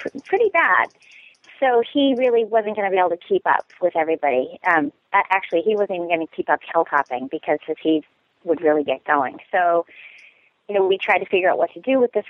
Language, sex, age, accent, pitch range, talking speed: English, female, 30-49, American, 160-210 Hz, 220 wpm